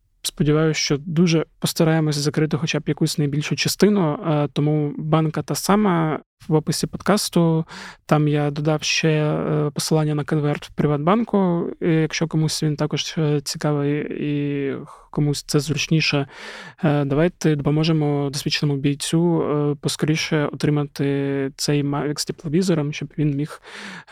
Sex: male